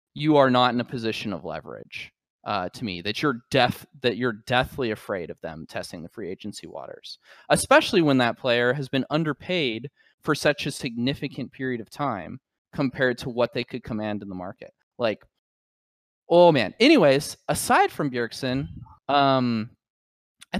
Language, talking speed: English, 165 wpm